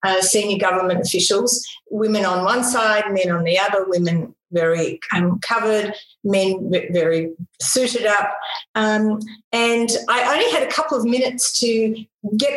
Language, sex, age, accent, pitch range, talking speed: English, female, 50-69, Australian, 200-245 Hz, 150 wpm